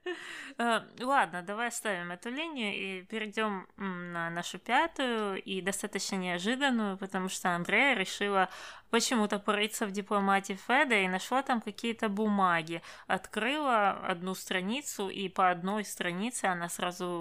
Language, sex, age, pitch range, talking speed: Russian, female, 20-39, 180-225 Hz, 125 wpm